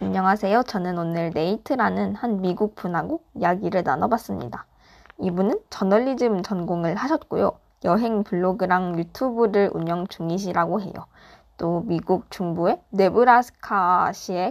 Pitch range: 175-225 Hz